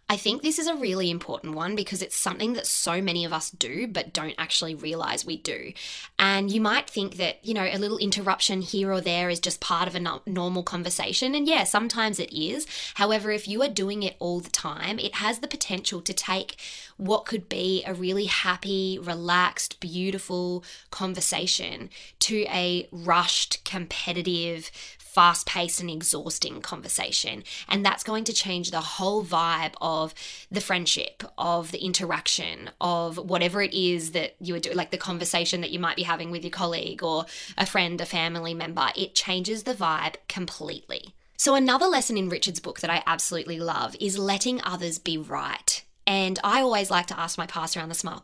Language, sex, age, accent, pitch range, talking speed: English, female, 20-39, Australian, 170-200 Hz, 190 wpm